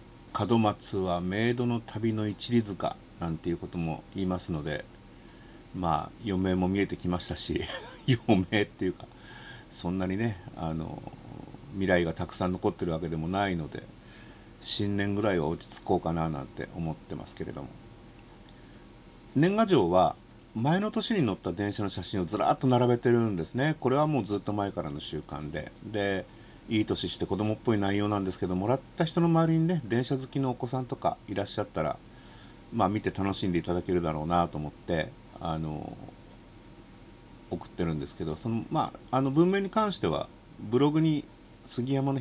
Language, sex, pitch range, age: Japanese, male, 85-120 Hz, 50-69